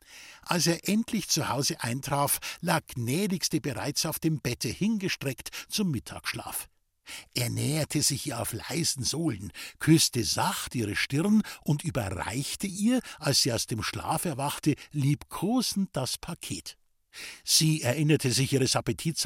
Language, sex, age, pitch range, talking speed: German, male, 60-79, 140-185 Hz, 135 wpm